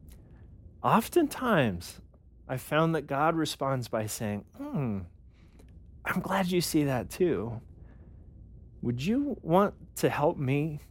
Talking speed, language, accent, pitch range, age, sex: 115 wpm, English, American, 90-145 Hz, 30-49, male